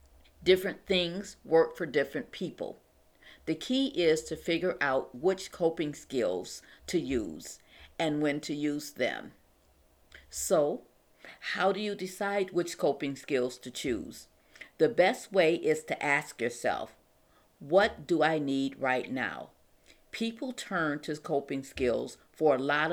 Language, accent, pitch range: English, American, 140-185 Hz